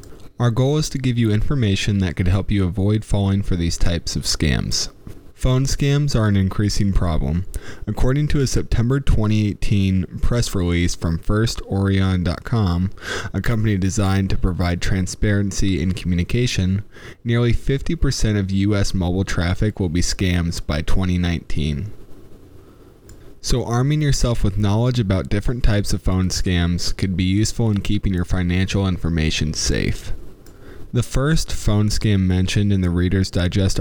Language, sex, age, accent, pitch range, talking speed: English, male, 20-39, American, 95-110 Hz, 145 wpm